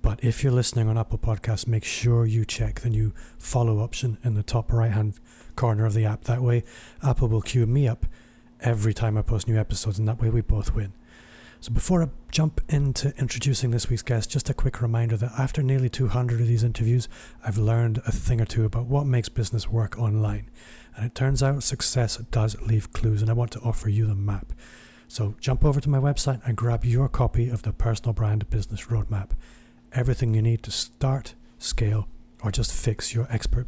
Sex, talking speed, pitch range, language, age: male, 210 wpm, 110-120 Hz, English, 30-49